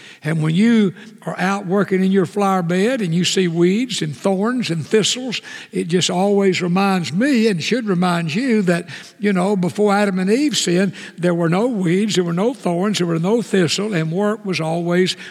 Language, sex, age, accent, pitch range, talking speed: English, male, 60-79, American, 170-215 Hz, 200 wpm